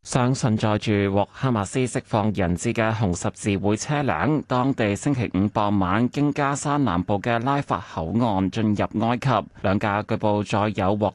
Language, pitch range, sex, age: Chinese, 100-130 Hz, male, 30-49